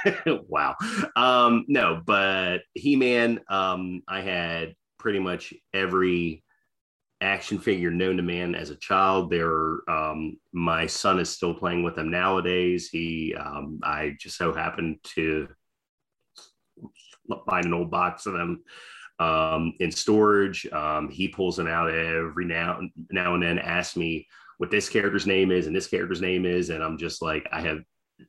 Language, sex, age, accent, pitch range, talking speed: English, male, 30-49, American, 85-95 Hz, 155 wpm